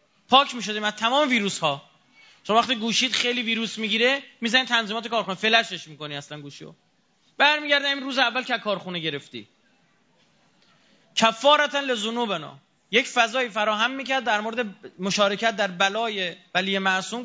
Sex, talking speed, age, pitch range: male, 155 wpm, 30-49, 180-245 Hz